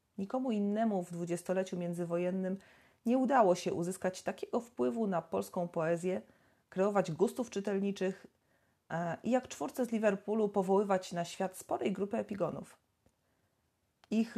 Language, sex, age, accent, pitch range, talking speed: Polish, female, 30-49, native, 170-220 Hz, 120 wpm